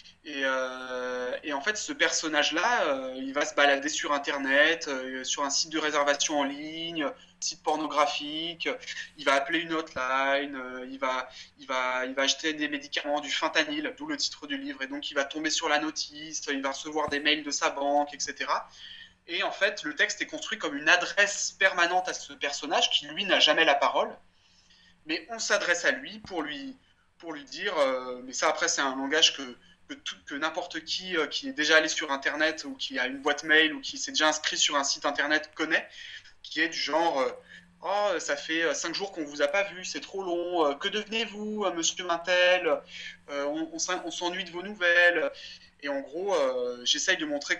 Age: 20-39